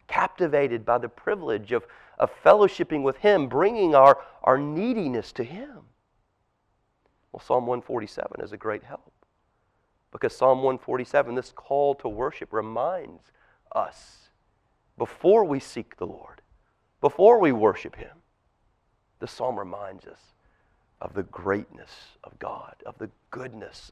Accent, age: American, 40-59